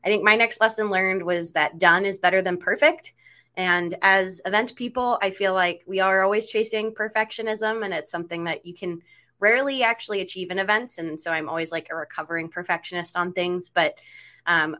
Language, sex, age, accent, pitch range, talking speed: English, female, 20-39, American, 165-195 Hz, 195 wpm